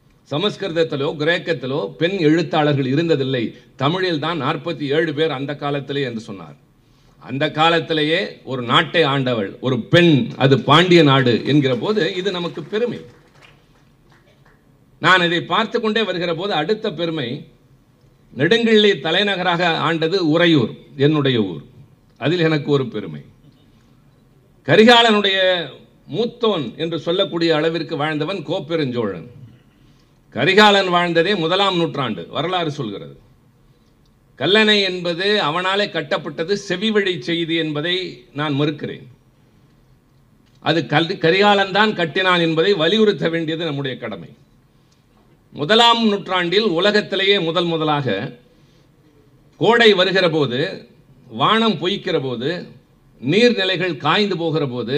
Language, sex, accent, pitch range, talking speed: Tamil, male, native, 140-185 Hz, 100 wpm